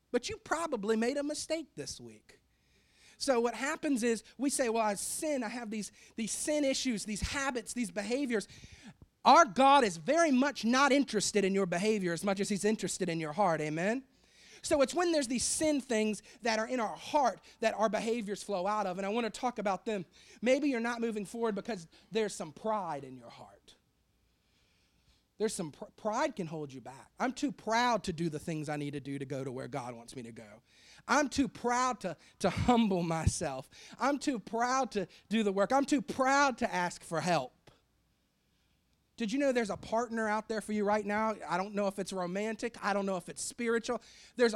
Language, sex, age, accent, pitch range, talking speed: English, male, 40-59, American, 180-240 Hz, 210 wpm